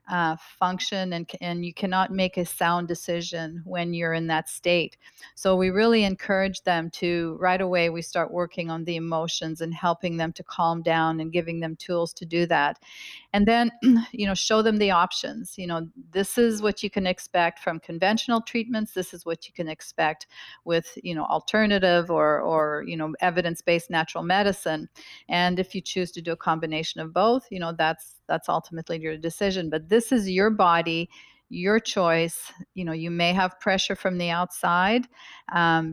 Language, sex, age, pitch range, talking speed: English, female, 40-59, 165-195 Hz, 185 wpm